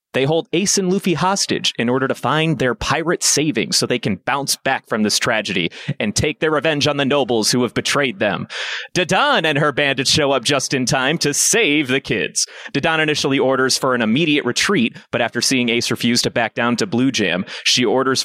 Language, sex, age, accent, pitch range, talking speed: English, male, 30-49, American, 120-155 Hz, 215 wpm